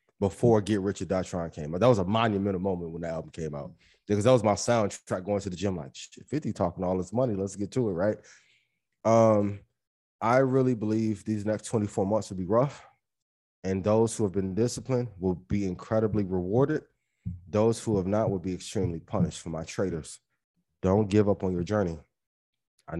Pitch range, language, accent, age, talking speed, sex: 90-115 Hz, English, American, 20-39, 195 wpm, male